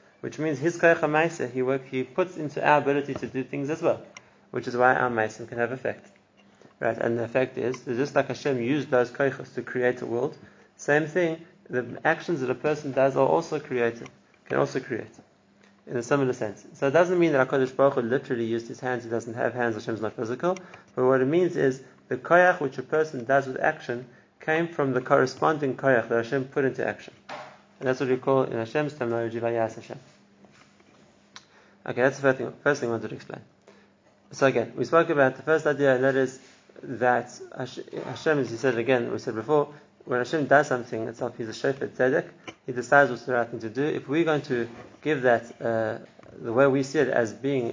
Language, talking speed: English, 215 wpm